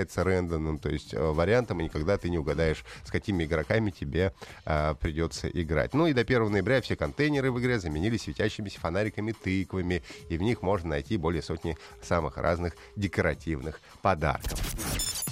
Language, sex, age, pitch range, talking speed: Russian, male, 30-49, 85-115 Hz, 155 wpm